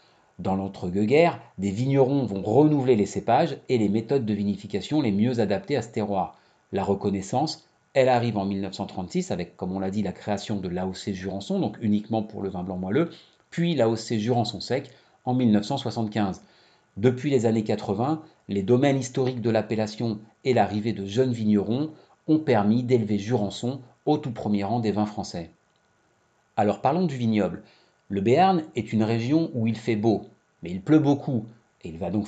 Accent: French